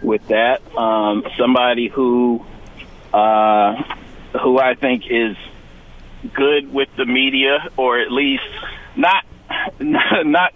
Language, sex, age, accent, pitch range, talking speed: English, male, 50-69, American, 115-140 Hz, 110 wpm